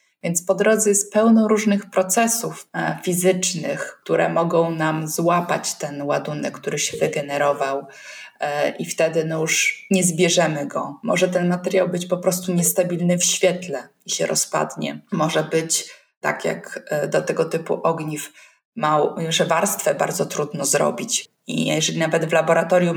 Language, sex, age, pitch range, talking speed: Polish, female, 20-39, 170-200 Hz, 140 wpm